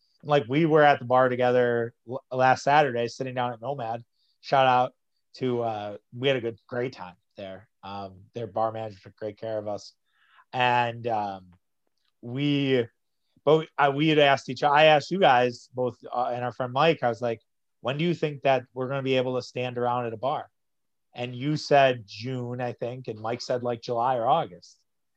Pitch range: 120-145 Hz